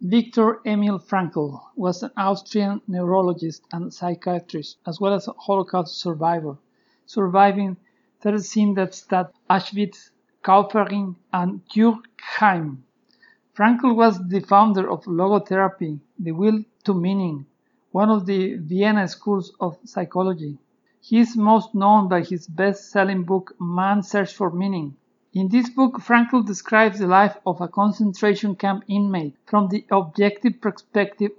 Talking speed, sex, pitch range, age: 130 wpm, male, 185-215 Hz, 50-69